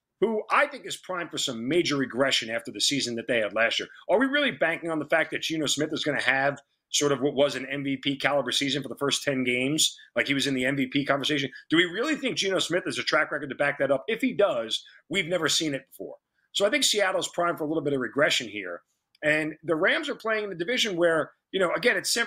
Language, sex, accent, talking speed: English, male, American, 265 wpm